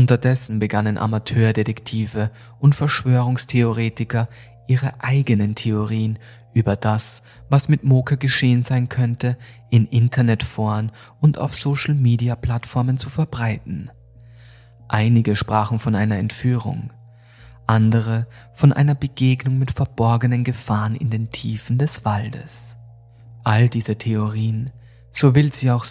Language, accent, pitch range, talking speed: German, German, 115-125 Hz, 115 wpm